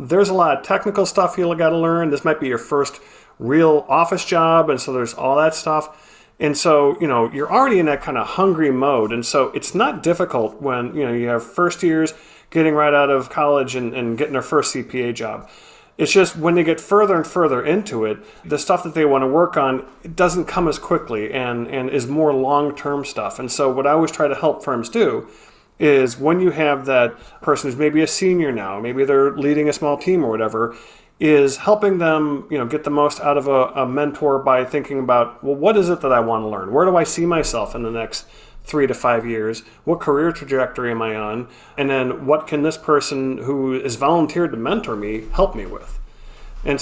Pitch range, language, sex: 130-160 Hz, English, male